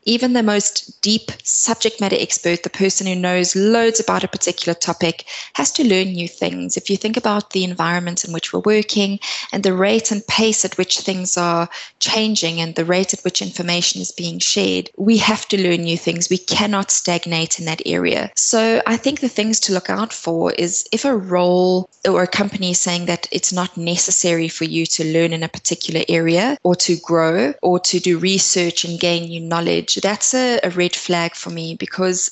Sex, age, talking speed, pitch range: female, 20-39, 210 wpm, 165-200 Hz